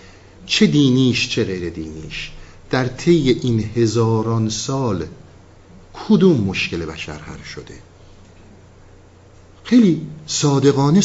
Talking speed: 85 wpm